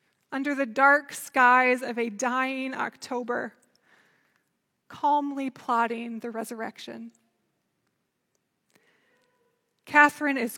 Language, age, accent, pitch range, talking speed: English, 20-39, American, 240-280 Hz, 80 wpm